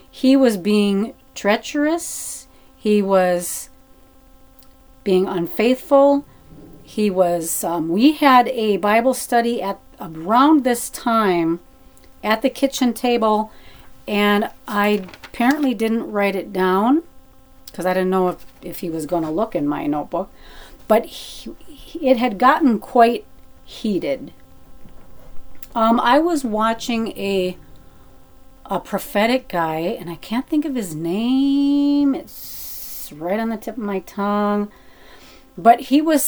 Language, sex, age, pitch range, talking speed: English, female, 40-59, 195-265 Hz, 125 wpm